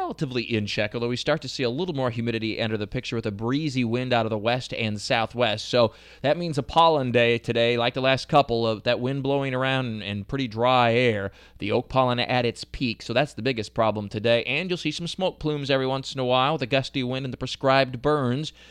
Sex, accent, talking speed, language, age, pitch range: male, American, 245 wpm, English, 20-39, 120-140 Hz